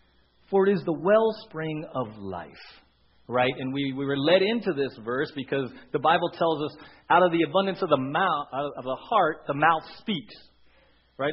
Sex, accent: male, American